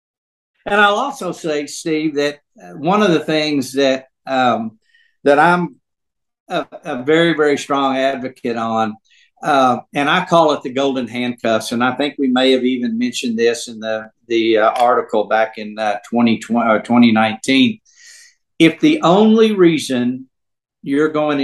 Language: English